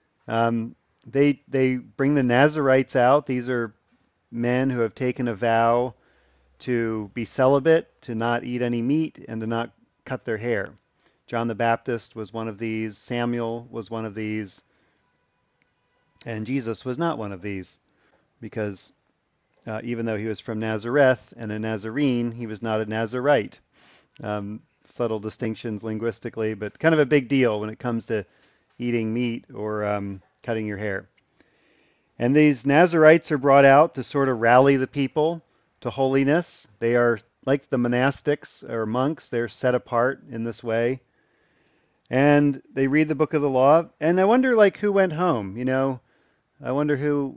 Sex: male